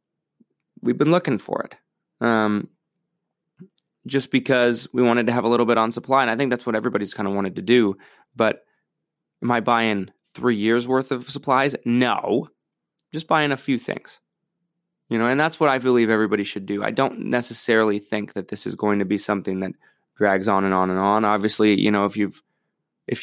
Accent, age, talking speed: American, 20-39, 200 wpm